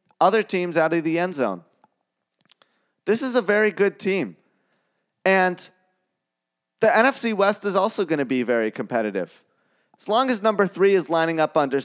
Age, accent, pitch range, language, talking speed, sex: 30-49, American, 125-185 Hz, English, 165 wpm, male